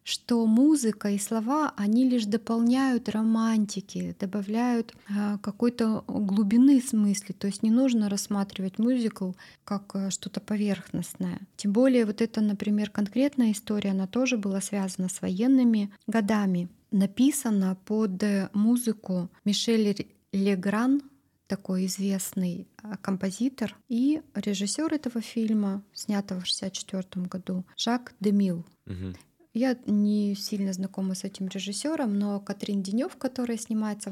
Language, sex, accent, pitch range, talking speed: Russian, female, native, 195-230 Hz, 115 wpm